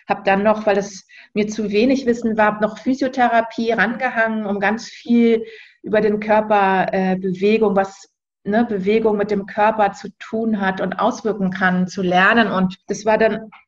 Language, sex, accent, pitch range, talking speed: German, female, German, 195-225 Hz, 170 wpm